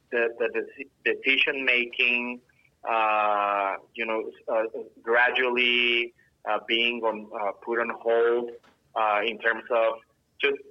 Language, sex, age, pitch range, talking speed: English, male, 20-39, 110-125 Hz, 120 wpm